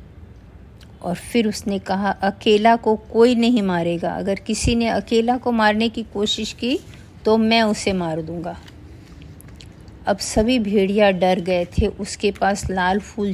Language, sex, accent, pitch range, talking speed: Hindi, female, native, 175-235 Hz, 150 wpm